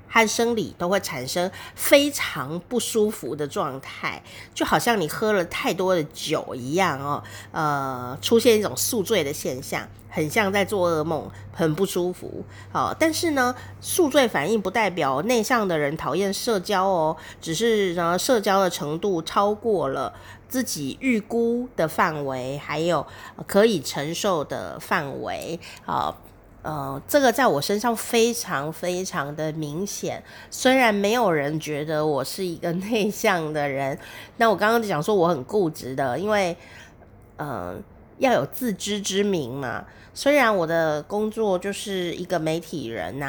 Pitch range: 150-210 Hz